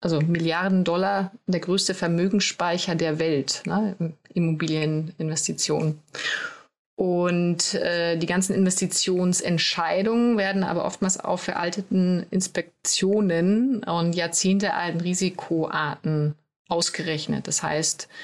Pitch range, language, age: 165-195 Hz, German, 30-49